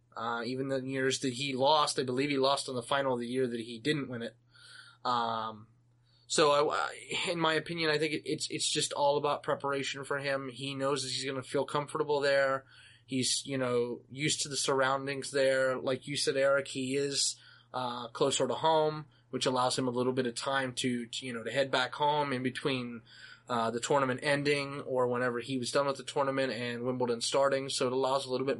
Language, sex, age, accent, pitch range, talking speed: English, male, 20-39, American, 125-145 Hz, 220 wpm